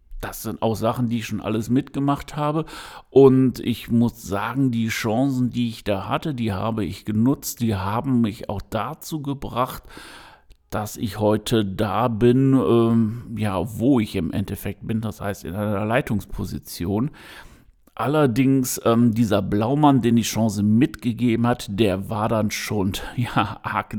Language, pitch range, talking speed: German, 100-120 Hz, 155 wpm